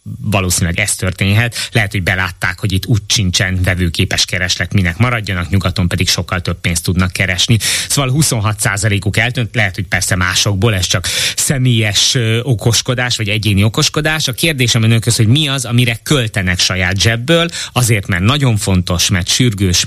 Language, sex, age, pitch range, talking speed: Hungarian, male, 20-39, 100-120 Hz, 155 wpm